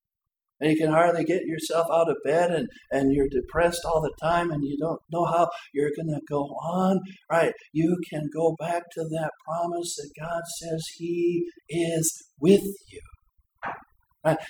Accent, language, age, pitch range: American, English, 60-79, 155-175 Hz